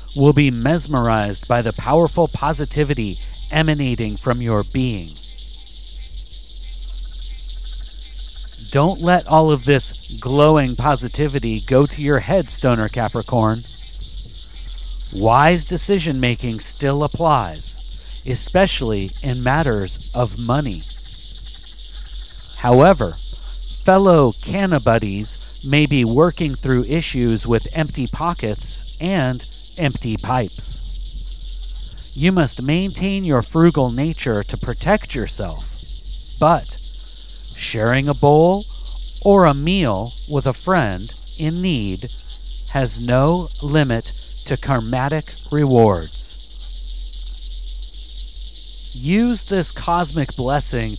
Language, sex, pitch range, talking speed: English, male, 95-150 Hz, 90 wpm